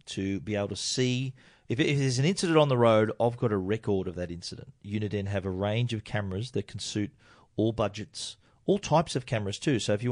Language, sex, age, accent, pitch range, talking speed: English, male, 40-59, Australian, 105-125 Hz, 230 wpm